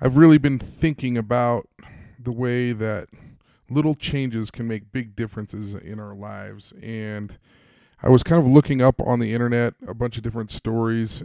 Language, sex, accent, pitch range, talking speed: English, male, American, 110-135 Hz, 170 wpm